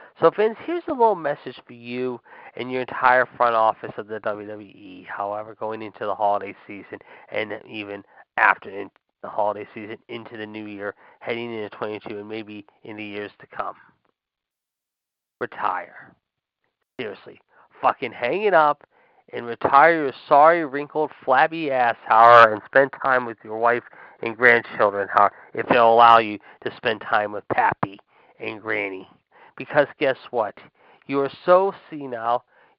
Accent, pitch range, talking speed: American, 110-165 Hz, 155 wpm